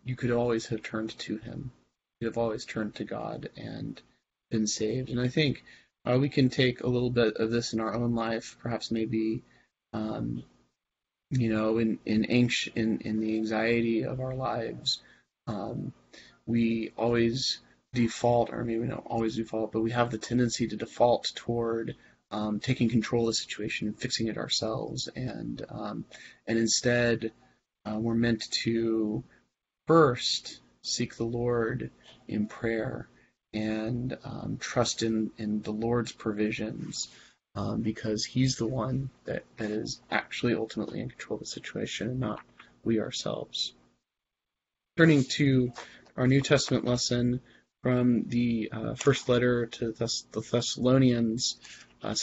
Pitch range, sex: 110-125 Hz, male